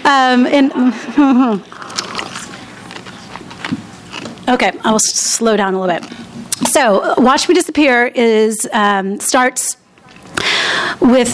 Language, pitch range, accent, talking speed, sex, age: English, 195-240 Hz, American, 105 wpm, female, 30-49